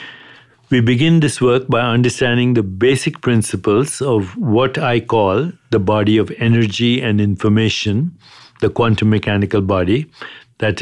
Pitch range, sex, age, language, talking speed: 105-125 Hz, male, 60-79, English, 135 wpm